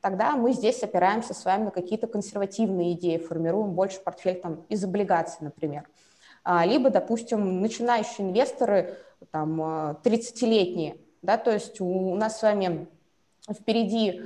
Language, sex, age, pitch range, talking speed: Russian, female, 20-39, 180-225 Hz, 120 wpm